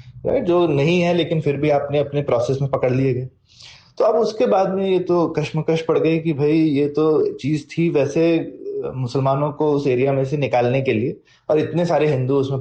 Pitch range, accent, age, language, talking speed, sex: 145-195 Hz, native, 20-39, Hindi, 210 wpm, male